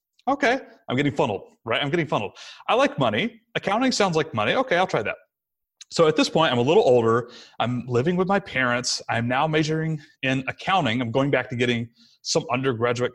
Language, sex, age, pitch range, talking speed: English, male, 30-49, 120-185 Hz, 200 wpm